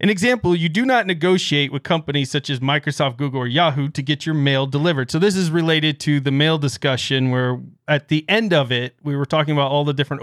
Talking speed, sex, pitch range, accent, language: 235 wpm, male, 130-165 Hz, American, English